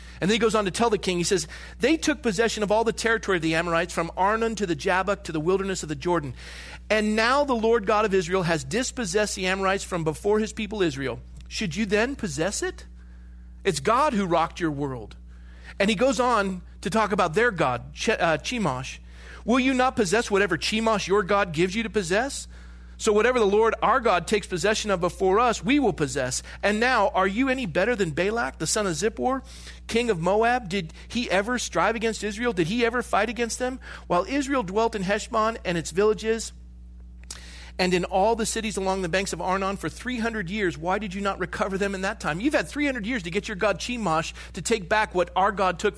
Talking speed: 225 wpm